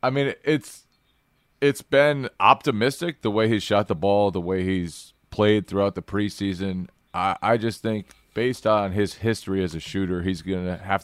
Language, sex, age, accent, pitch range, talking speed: English, male, 30-49, American, 90-105 Hz, 185 wpm